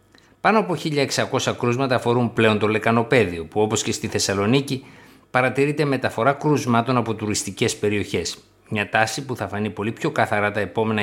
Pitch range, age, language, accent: 105-130 Hz, 50-69, Greek, native